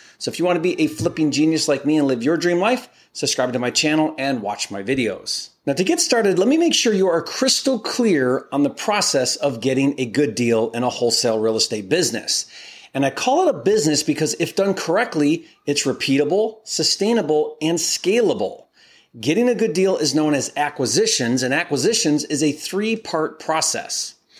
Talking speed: 195 wpm